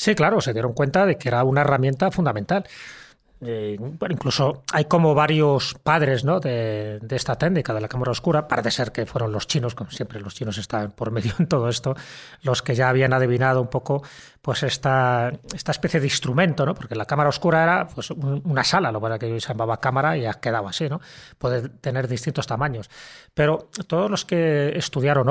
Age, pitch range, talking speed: 30-49, 120-150 Hz, 200 wpm